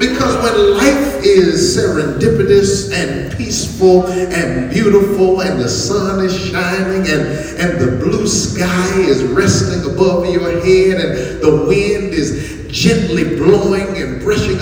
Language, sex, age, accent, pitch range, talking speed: English, male, 40-59, American, 140-185 Hz, 130 wpm